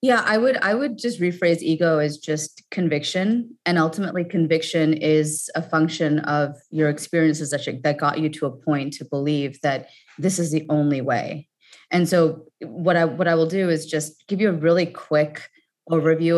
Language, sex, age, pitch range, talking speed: English, female, 20-39, 145-170 Hz, 185 wpm